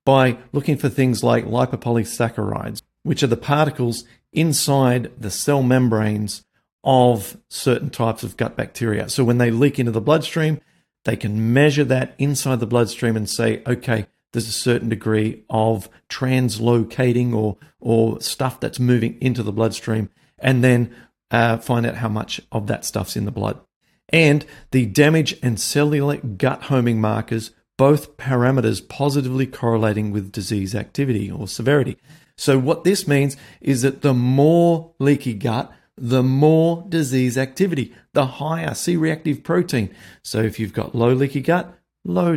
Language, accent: English, Australian